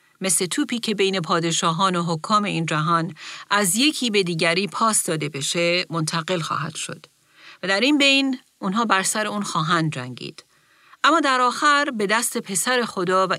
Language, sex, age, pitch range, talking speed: Persian, female, 40-59, 170-225 Hz, 165 wpm